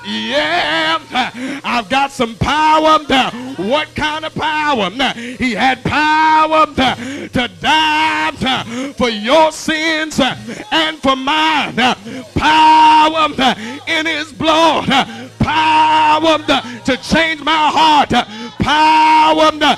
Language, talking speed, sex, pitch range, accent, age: English, 90 wpm, male, 255-315 Hz, American, 40-59